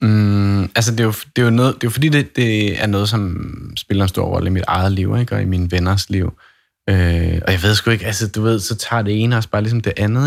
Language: Danish